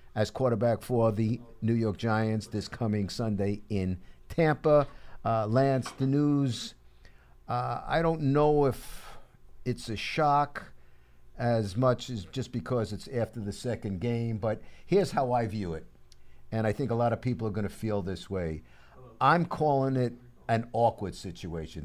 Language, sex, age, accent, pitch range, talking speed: English, male, 50-69, American, 95-125 Hz, 160 wpm